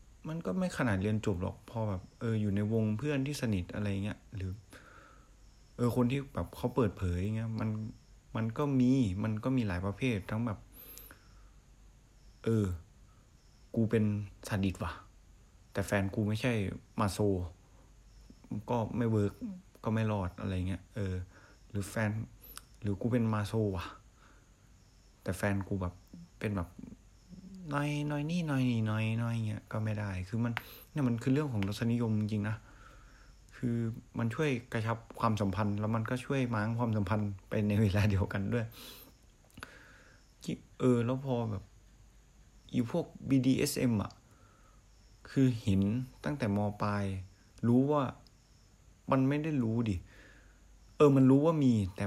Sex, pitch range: male, 100-125 Hz